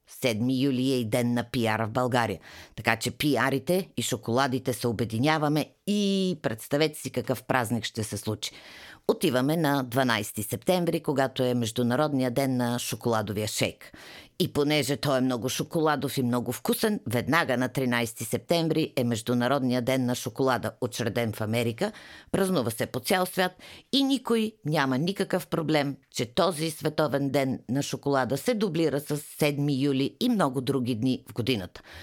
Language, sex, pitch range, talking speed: Bulgarian, female, 120-155 Hz, 155 wpm